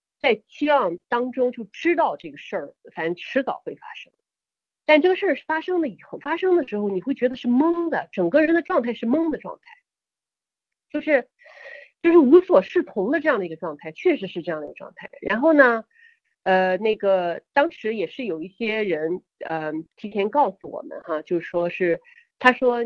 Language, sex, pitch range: Chinese, female, 190-295 Hz